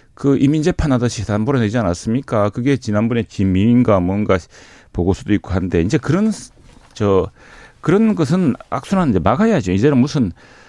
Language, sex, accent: Korean, male, native